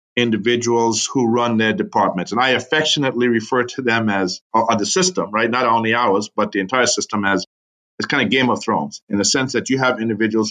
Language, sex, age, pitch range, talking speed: English, male, 50-69, 110-140 Hz, 205 wpm